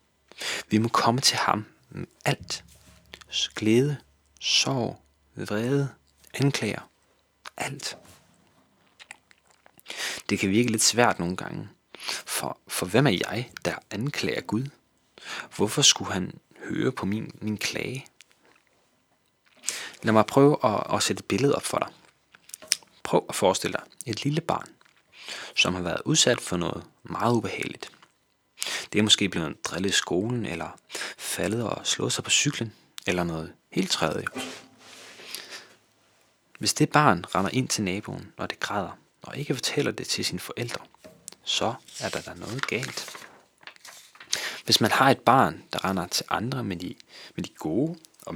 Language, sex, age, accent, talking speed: Danish, male, 30-49, native, 145 wpm